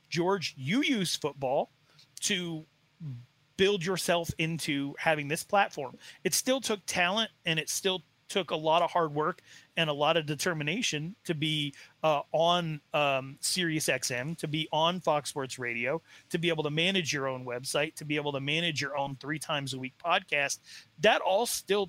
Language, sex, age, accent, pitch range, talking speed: English, male, 30-49, American, 145-180 Hz, 180 wpm